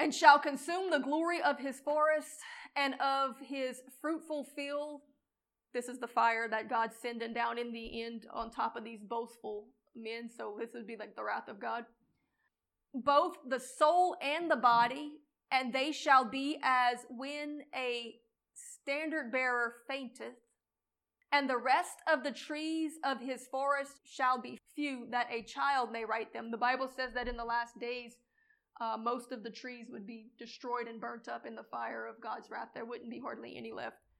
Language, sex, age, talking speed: English, female, 30-49, 180 wpm